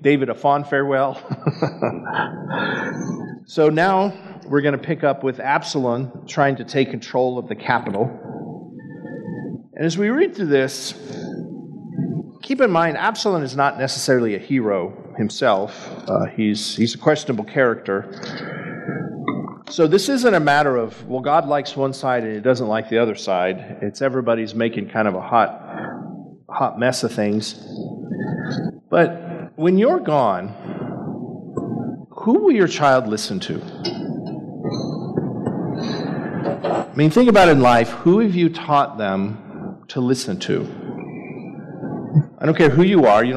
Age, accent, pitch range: 40-59, American, 120-170 Hz